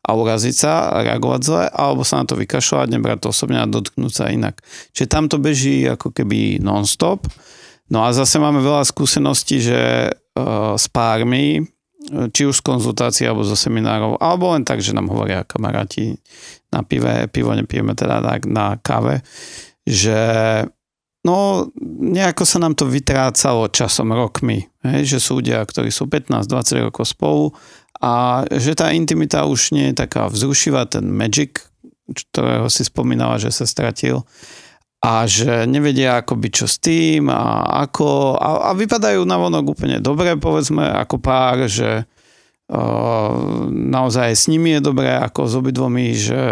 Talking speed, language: 155 wpm, Slovak